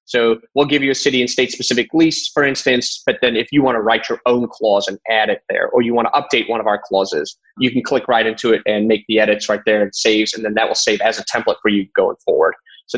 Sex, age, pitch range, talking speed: male, 20-39, 110-130 Hz, 285 wpm